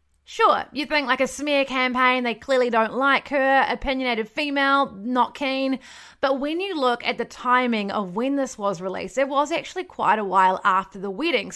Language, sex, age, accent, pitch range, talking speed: English, female, 30-49, Australian, 215-275 Hz, 190 wpm